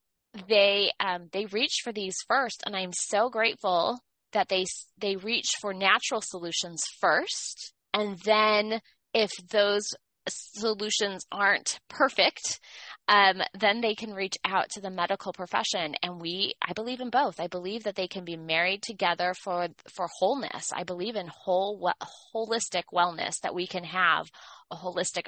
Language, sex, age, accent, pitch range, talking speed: English, female, 20-39, American, 175-210 Hz, 155 wpm